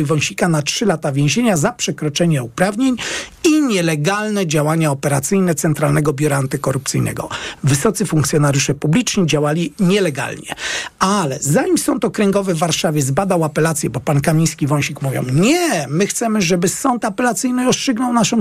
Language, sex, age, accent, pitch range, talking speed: Polish, male, 40-59, native, 155-215 Hz, 135 wpm